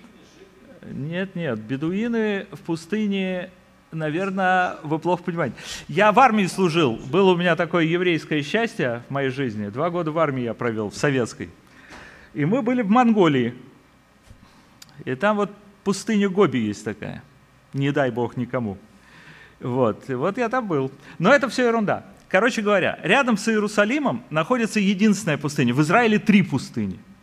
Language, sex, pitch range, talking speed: Ukrainian, male, 140-205 Hz, 145 wpm